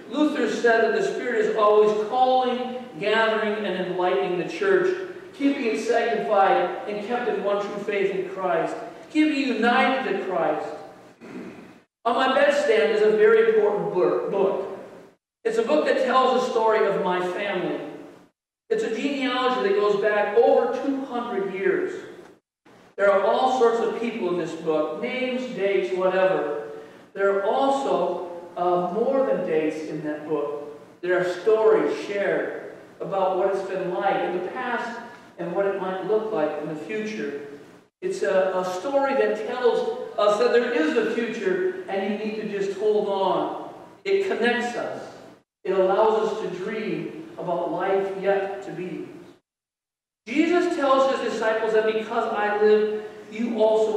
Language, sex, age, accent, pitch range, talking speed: English, male, 50-69, American, 190-255 Hz, 160 wpm